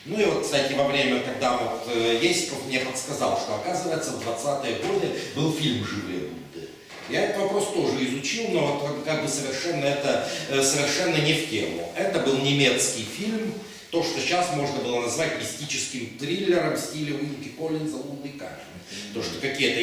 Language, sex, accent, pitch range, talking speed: Russian, male, native, 120-160 Hz, 165 wpm